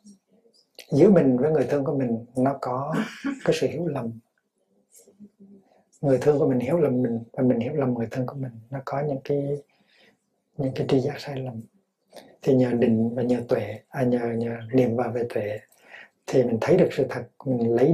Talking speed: 195 wpm